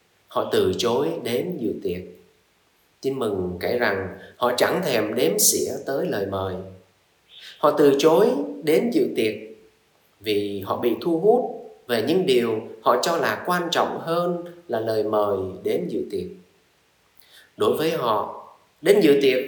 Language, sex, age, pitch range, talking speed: Vietnamese, male, 20-39, 120-200 Hz, 155 wpm